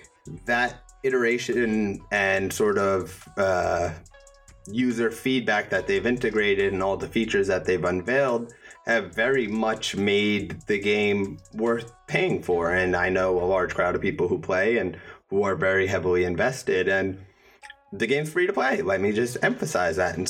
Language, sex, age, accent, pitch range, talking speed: English, male, 30-49, American, 95-120 Hz, 165 wpm